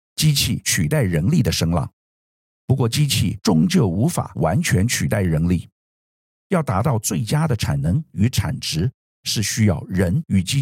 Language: Chinese